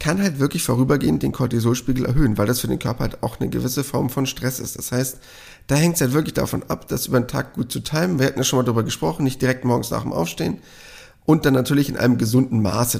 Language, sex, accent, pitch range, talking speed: German, male, German, 125-155 Hz, 260 wpm